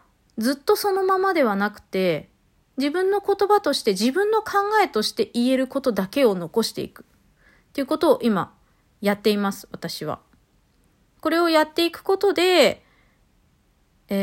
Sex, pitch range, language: female, 205-315 Hz, Japanese